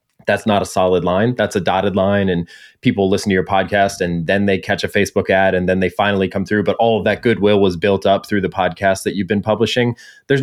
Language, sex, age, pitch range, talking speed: English, male, 20-39, 95-110 Hz, 255 wpm